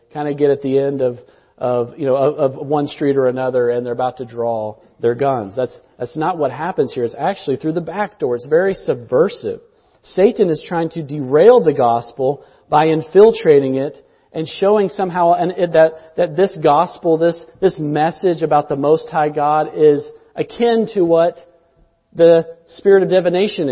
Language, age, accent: English, 40-59, American